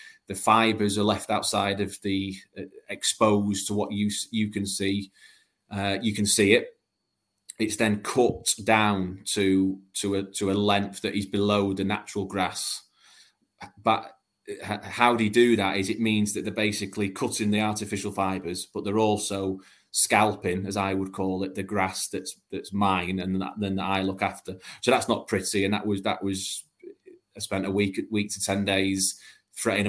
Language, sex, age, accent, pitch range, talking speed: English, male, 20-39, British, 95-105 Hz, 185 wpm